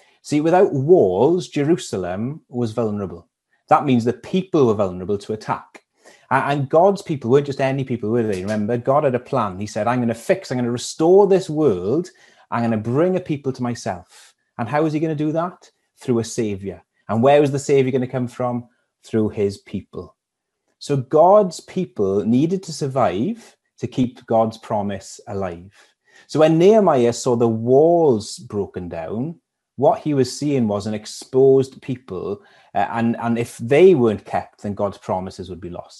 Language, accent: English, British